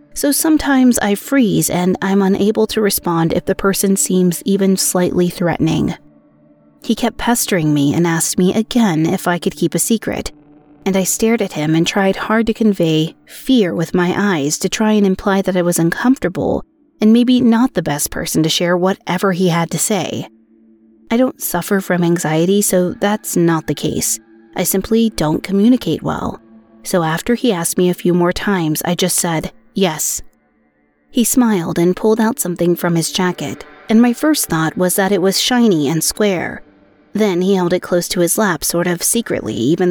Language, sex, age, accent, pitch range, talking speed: English, female, 30-49, American, 165-210 Hz, 190 wpm